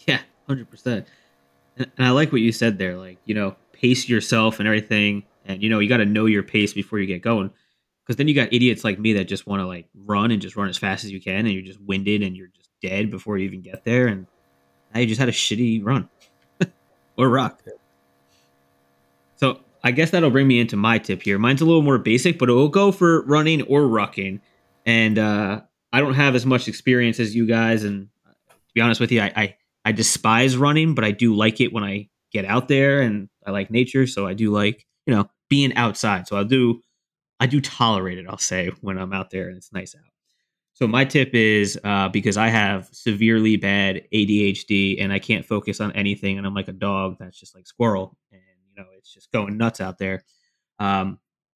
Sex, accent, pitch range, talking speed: male, American, 95-120 Hz, 225 wpm